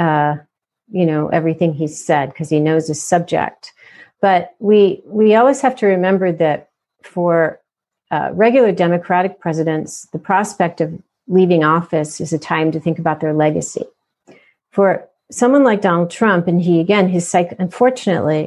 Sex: female